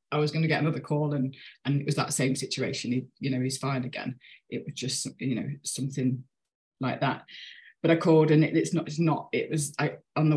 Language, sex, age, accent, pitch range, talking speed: English, female, 20-39, British, 140-155 Hz, 245 wpm